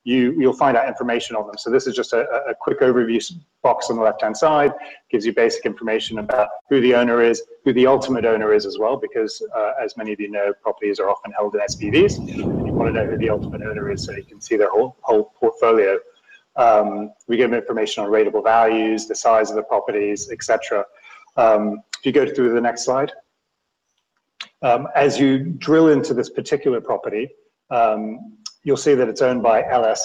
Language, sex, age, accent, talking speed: English, male, 30-49, British, 205 wpm